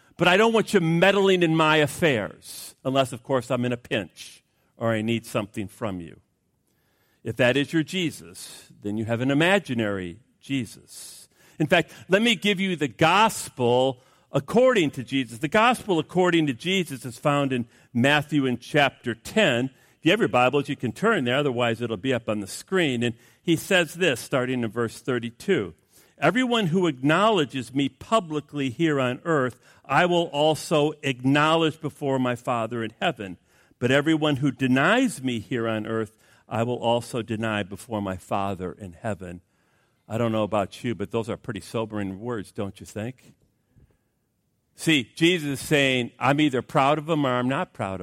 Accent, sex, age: American, male, 50-69